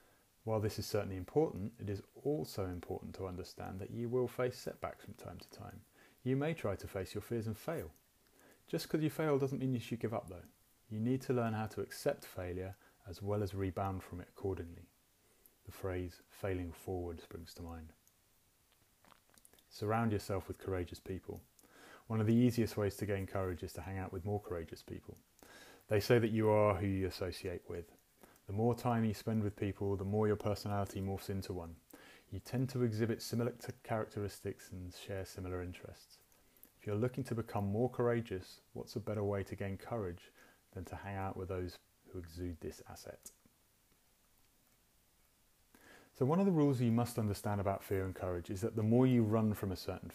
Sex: male